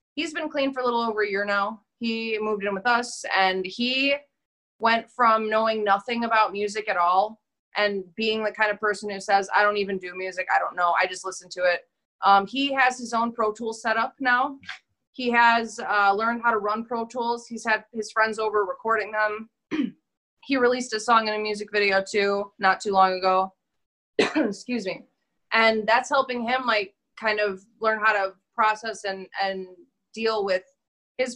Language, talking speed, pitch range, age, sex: English, 195 wpm, 195-235 Hz, 20-39, female